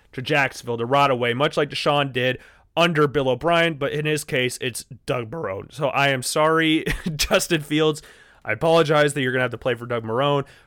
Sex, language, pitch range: male, English, 125-160 Hz